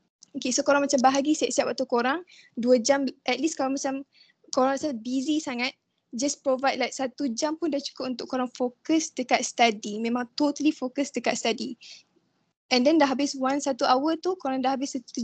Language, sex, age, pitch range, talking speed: Malay, female, 10-29, 240-275 Hz, 190 wpm